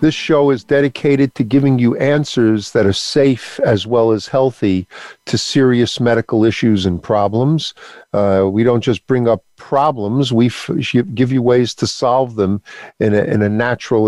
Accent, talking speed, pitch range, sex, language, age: American, 165 wpm, 110-140 Hz, male, English, 50-69